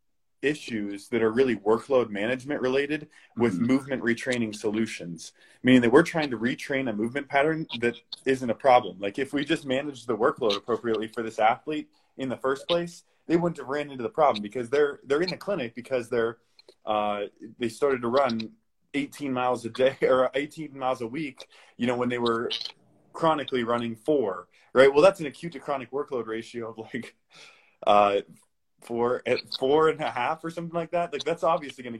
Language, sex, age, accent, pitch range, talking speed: English, male, 20-39, American, 115-145 Hz, 190 wpm